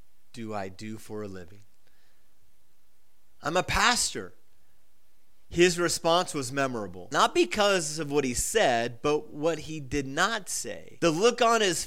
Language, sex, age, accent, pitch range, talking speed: English, male, 30-49, American, 120-165 Hz, 145 wpm